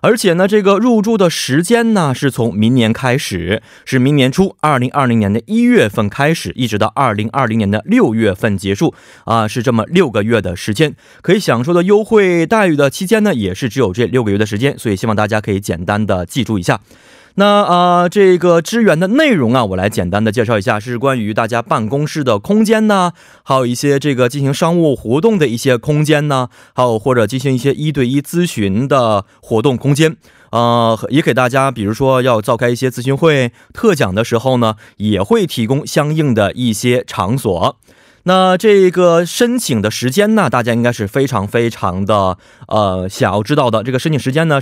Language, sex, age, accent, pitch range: Korean, male, 20-39, Chinese, 115-175 Hz